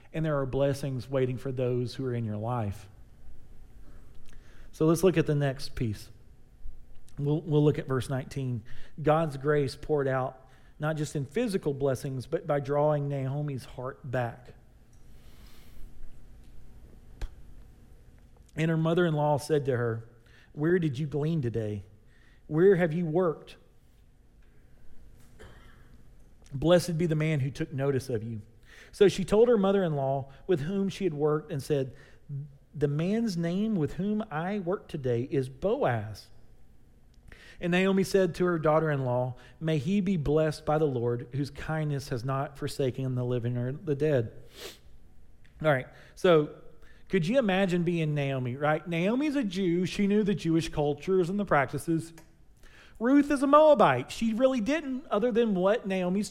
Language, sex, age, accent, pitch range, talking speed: English, male, 40-59, American, 130-180 Hz, 150 wpm